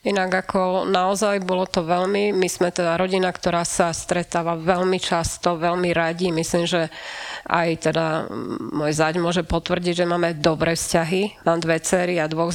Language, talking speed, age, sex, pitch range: Slovak, 160 wpm, 30-49, female, 175-205 Hz